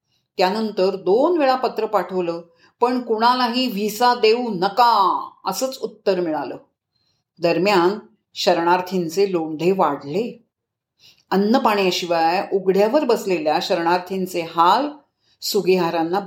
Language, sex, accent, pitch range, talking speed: Marathi, female, native, 180-255 Hz, 90 wpm